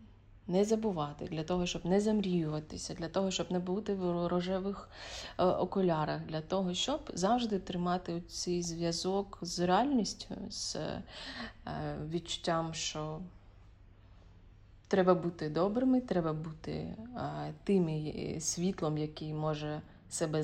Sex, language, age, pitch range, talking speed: female, Ukrainian, 30-49, 155-180 Hz, 110 wpm